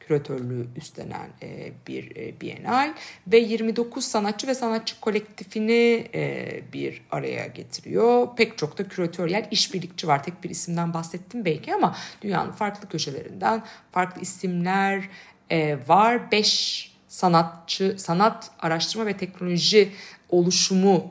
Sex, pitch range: female, 155-210 Hz